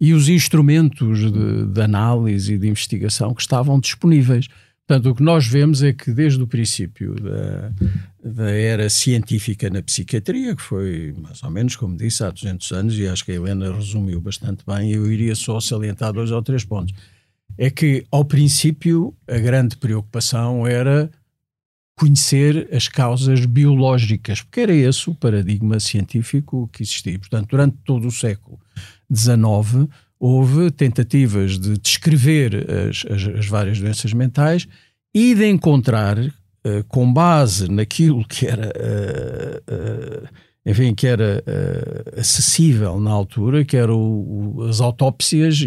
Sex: male